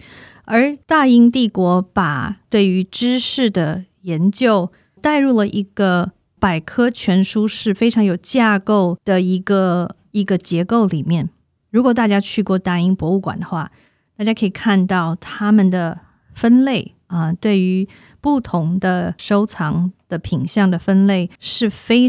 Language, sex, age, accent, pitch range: Chinese, female, 20-39, native, 170-215 Hz